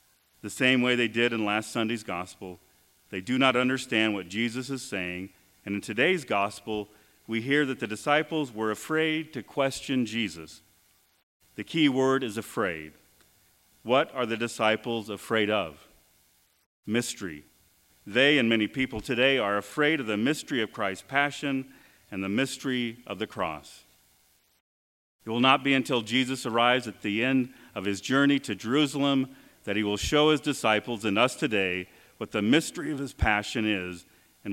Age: 40-59